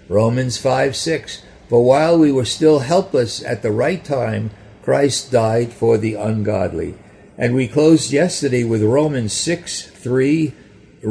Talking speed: 140 wpm